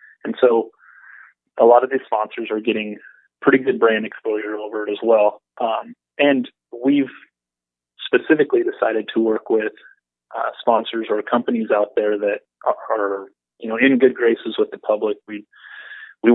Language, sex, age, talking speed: English, male, 20-39, 160 wpm